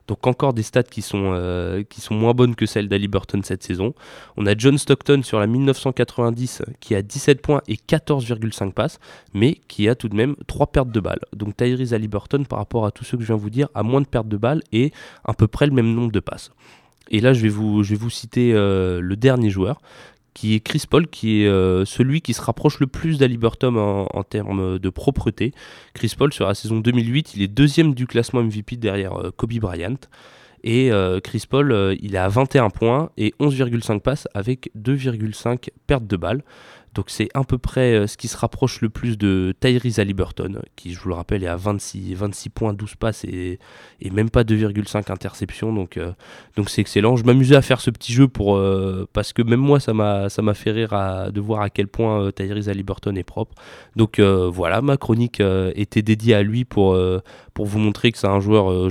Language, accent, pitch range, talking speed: French, French, 100-125 Hz, 220 wpm